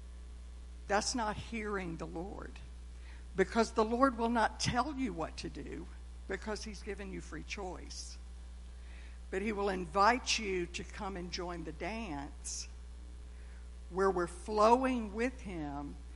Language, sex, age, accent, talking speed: English, female, 60-79, American, 135 wpm